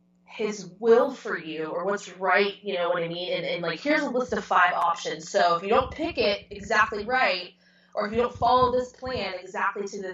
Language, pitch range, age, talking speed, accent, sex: English, 175-205 Hz, 20-39, 230 wpm, American, female